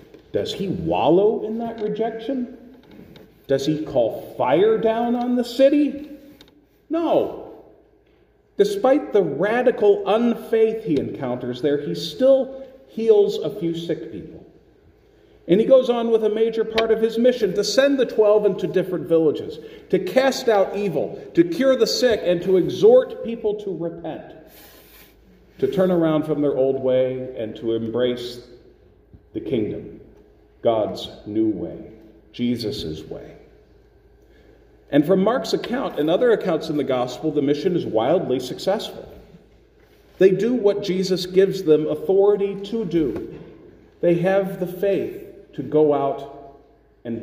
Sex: male